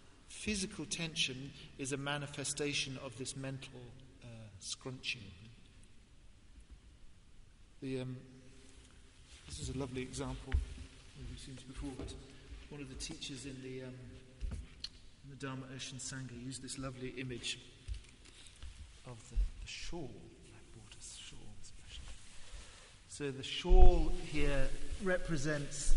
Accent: British